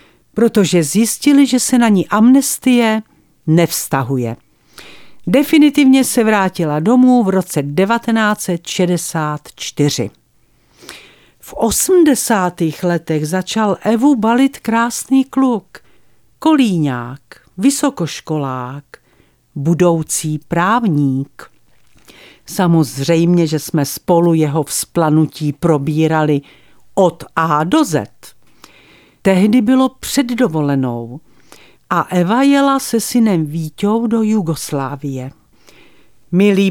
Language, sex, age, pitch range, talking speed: Czech, female, 50-69, 160-235 Hz, 85 wpm